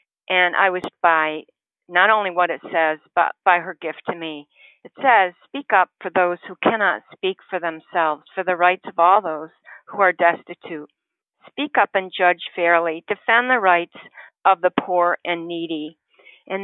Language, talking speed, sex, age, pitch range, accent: English, 175 wpm, female, 50-69, 165-205 Hz, American